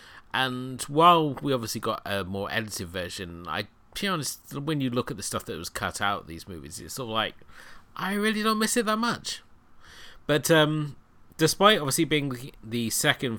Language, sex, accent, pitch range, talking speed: English, male, British, 95-125 Hz, 195 wpm